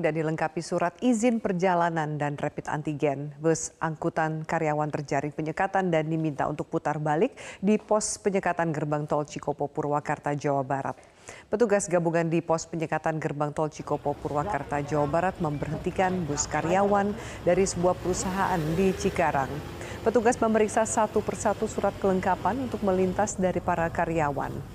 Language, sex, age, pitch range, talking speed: Indonesian, female, 40-59, 155-200 Hz, 140 wpm